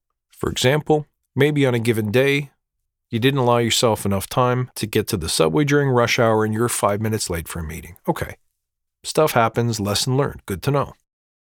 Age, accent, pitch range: 40-59, American, 95-140 Hz